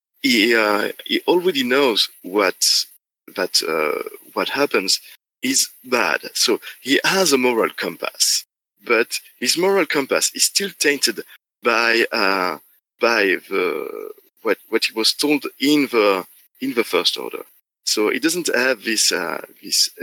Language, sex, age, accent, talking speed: English, male, 50-69, French, 140 wpm